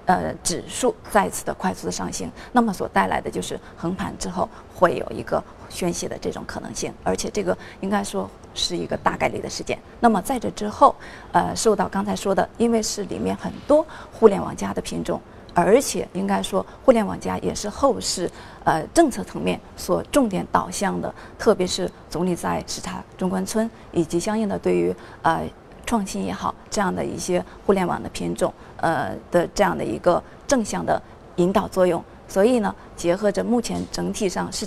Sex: female